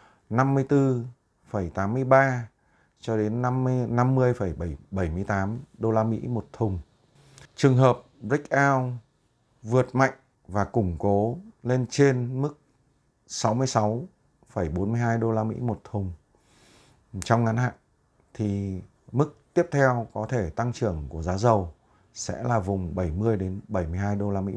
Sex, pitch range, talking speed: male, 95-130 Hz, 125 wpm